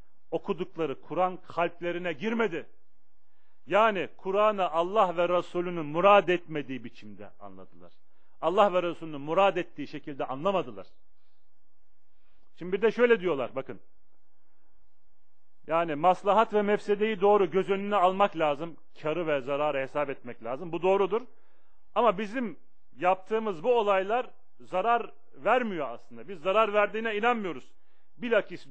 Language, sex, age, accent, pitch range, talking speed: Turkish, male, 40-59, native, 140-200 Hz, 115 wpm